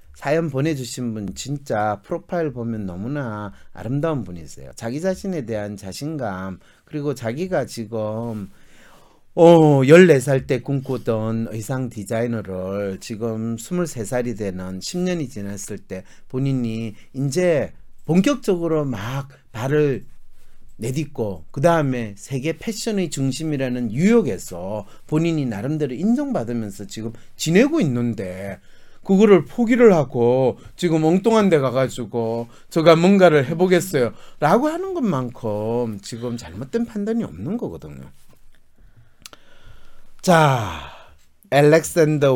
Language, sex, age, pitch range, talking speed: English, male, 40-59, 110-170 Hz, 95 wpm